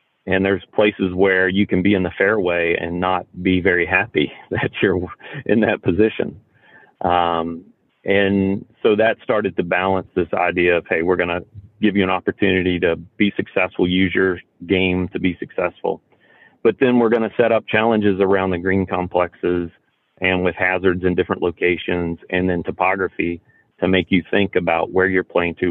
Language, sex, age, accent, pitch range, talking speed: English, male, 40-59, American, 85-95 Hz, 180 wpm